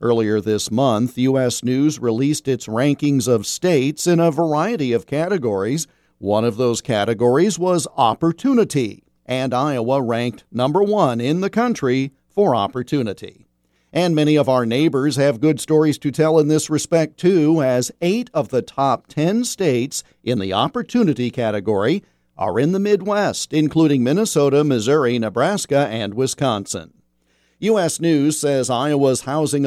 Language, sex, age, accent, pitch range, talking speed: English, male, 50-69, American, 120-160 Hz, 145 wpm